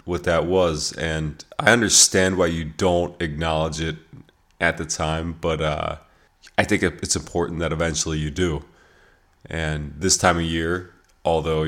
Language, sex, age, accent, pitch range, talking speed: English, male, 20-39, American, 75-85 Hz, 155 wpm